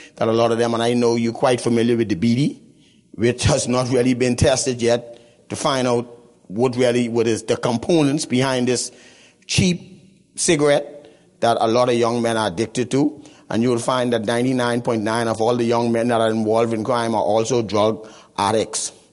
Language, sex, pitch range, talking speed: English, male, 110-125 Hz, 195 wpm